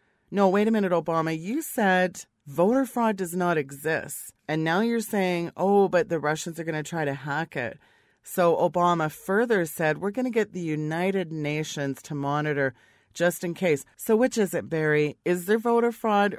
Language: English